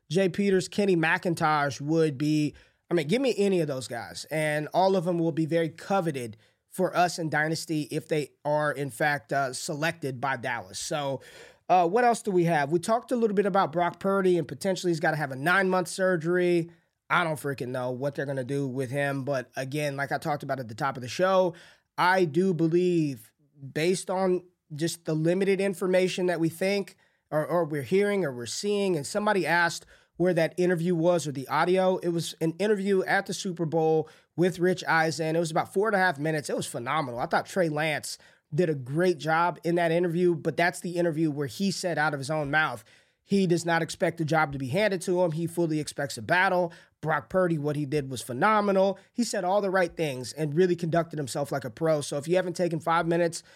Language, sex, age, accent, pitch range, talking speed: English, male, 20-39, American, 150-185 Hz, 225 wpm